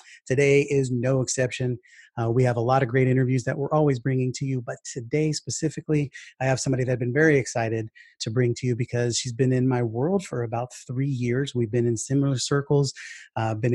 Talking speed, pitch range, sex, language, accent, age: 220 wpm, 120-140 Hz, male, English, American, 30-49